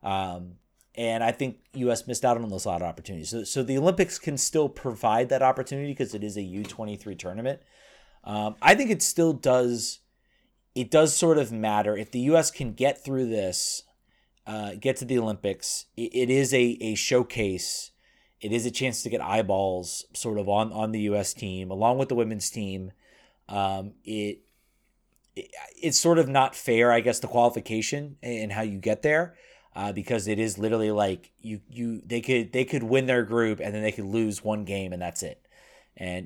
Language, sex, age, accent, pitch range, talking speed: English, male, 30-49, American, 105-130 Hz, 200 wpm